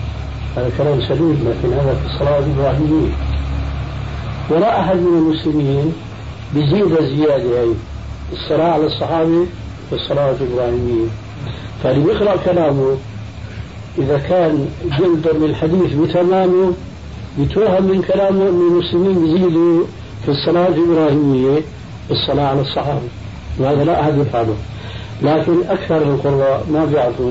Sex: male